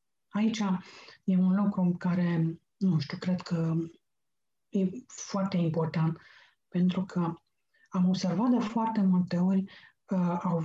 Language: Romanian